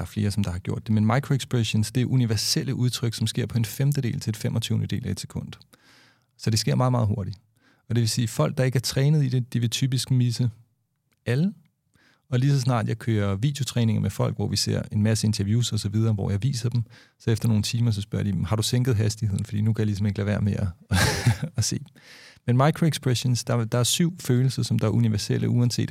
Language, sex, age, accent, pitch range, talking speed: Danish, male, 40-59, native, 110-130 Hz, 245 wpm